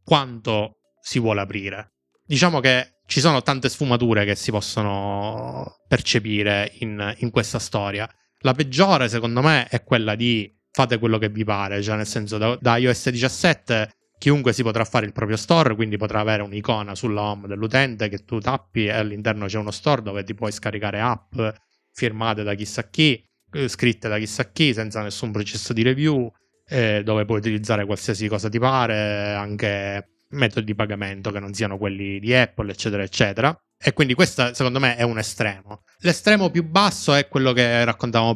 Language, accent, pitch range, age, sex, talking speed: Italian, native, 105-125 Hz, 20-39, male, 175 wpm